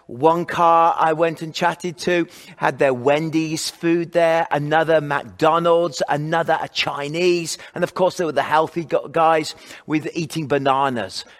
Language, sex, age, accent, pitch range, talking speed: English, male, 40-59, British, 145-185 Hz, 145 wpm